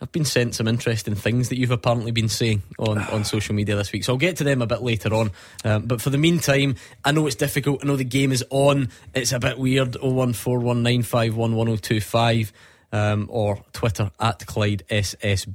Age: 20-39